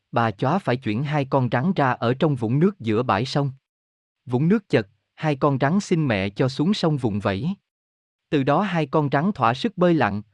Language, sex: Vietnamese, male